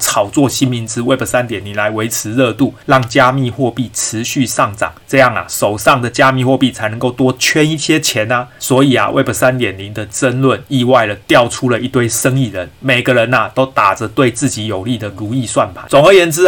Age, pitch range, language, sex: 30-49, 120-140 Hz, Chinese, male